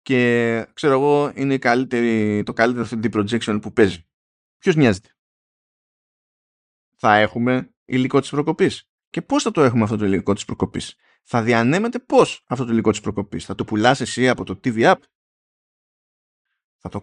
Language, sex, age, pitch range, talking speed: Greek, male, 20-39, 110-150 Hz, 160 wpm